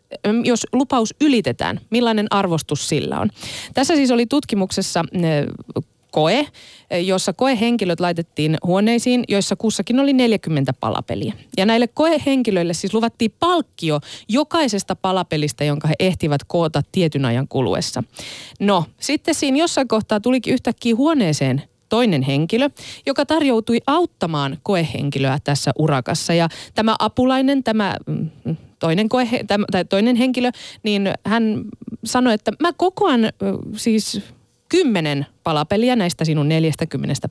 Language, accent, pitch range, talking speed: Finnish, native, 160-245 Hz, 115 wpm